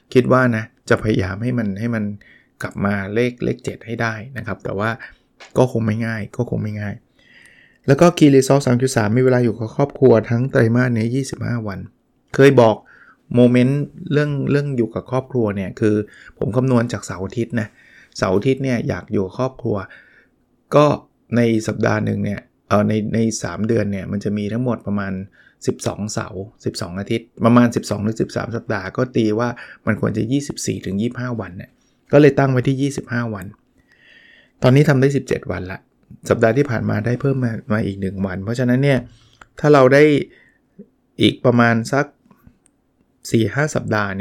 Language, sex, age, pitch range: Thai, male, 20-39, 105-130 Hz